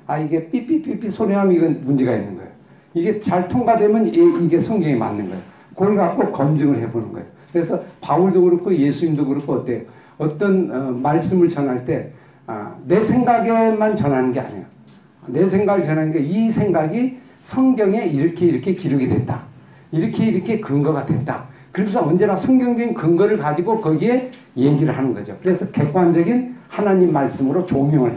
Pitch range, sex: 135-200 Hz, male